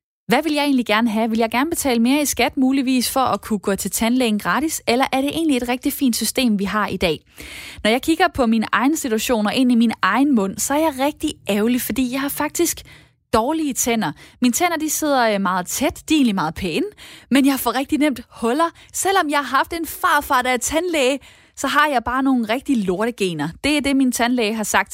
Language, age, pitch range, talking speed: Danish, 20-39, 225-285 Hz, 230 wpm